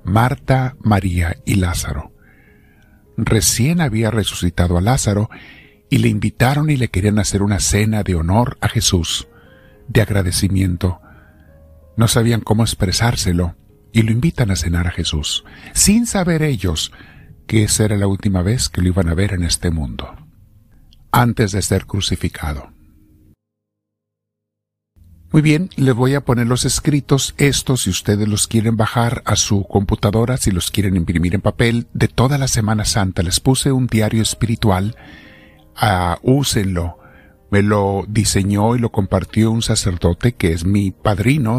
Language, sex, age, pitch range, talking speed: Spanish, male, 50-69, 95-120 Hz, 145 wpm